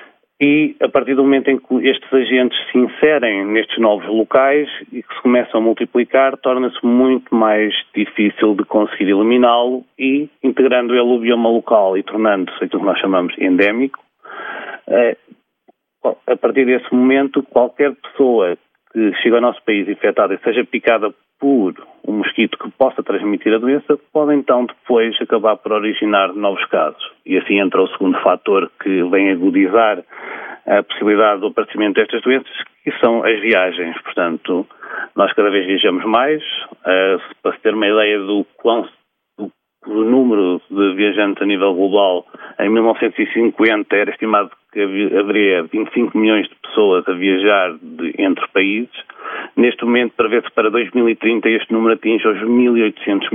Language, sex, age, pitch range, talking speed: Portuguese, male, 30-49, 105-135 Hz, 150 wpm